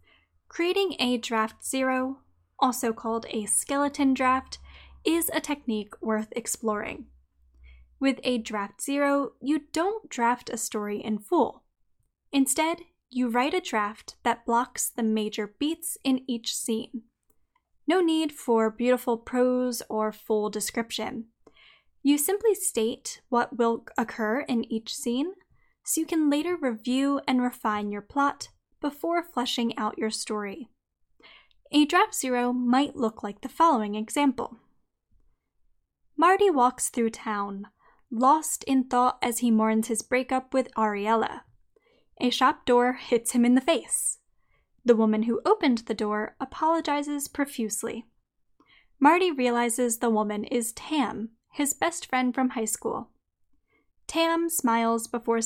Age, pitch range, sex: 10-29, 225-285 Hz, female